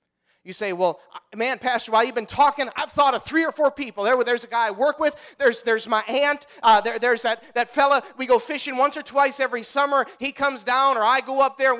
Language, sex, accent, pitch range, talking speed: English, male, American, 175-255 Hz, 255 wpm